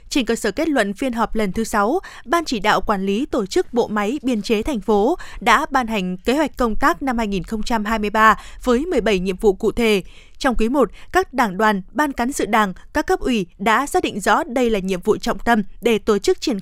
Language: Vietnamese